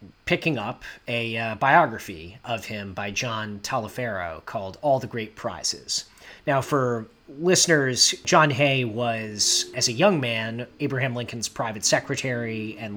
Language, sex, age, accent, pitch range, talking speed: English, male, 30-49, American, 105-135 Hz, 140 wpm